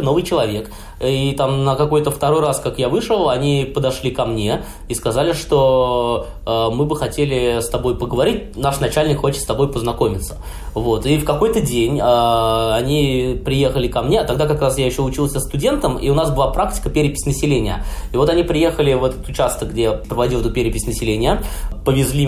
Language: Russian